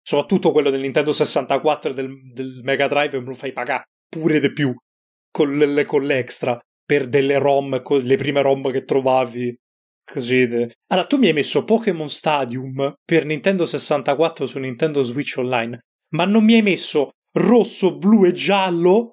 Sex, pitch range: male, 115-150 Hz